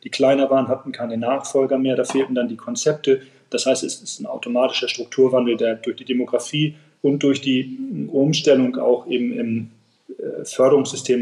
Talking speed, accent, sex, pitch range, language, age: 165 wpm, German, male, 125-145 Hz, German, 40-59